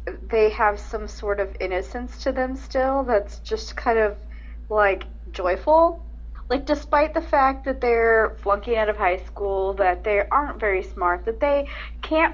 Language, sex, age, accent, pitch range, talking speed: English, female, 30-49, American, 175-250 Hz, 165 wpm